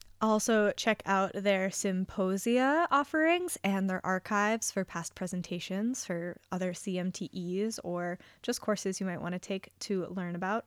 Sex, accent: female, American